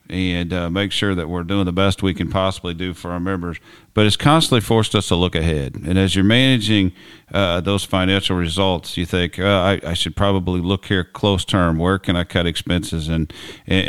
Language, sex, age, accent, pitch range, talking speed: English, male, 50-69, American, 85-100 Hz, 215 wpm